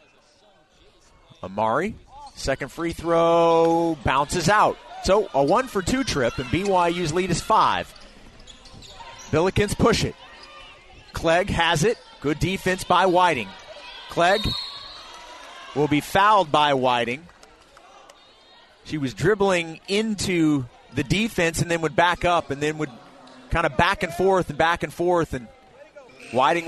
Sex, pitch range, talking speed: male, 125-175 Hz, 125 wpm